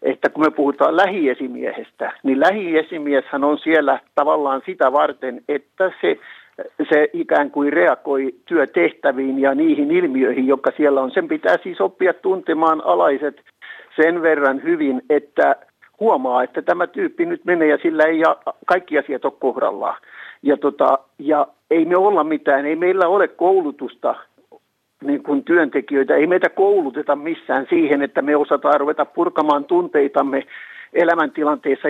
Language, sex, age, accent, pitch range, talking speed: Finnish, male, 60-79, native, 145-190 Hz, 135 wpm